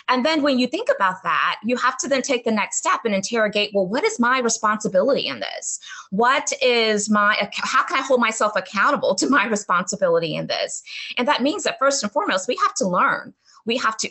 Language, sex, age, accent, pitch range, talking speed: English, female, 20-39, American, 190-265 Hz, 220 wpm